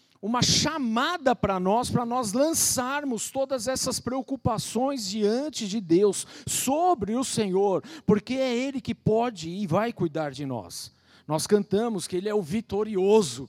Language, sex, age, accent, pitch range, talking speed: Portuguese, male, 50-69, Brazilian, 175-255 Hz, 145 wpm